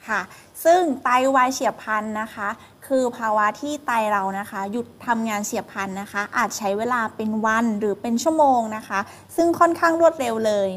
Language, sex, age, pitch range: Thai, female, 20-39, 205-255 Hz